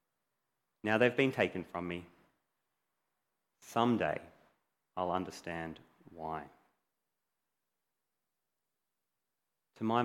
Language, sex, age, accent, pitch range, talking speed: English, male, 30-49, Australian, 95-125 Hz, 70 wpm